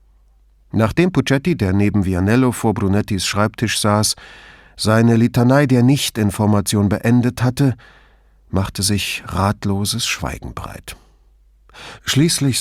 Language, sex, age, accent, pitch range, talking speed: English, male, 50-69, German, 80-120 Hz, 100 wpm